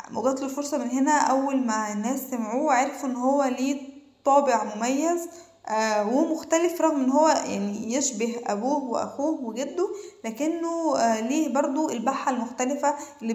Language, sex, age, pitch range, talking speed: Arabic, female, 20-39, 220-290 Hz, 140 wpm